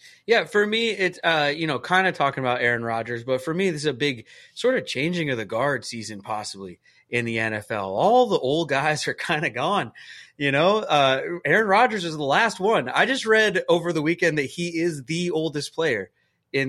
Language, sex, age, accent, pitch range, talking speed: English, male, 30-49, American, 140-190 Hz, 220 wpm